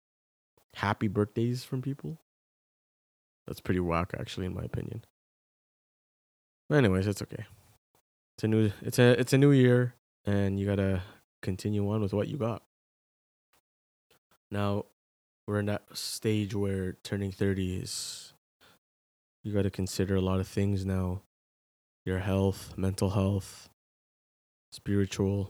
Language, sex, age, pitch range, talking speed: English, male, 20-39, 90-105 Hz, 130 wpm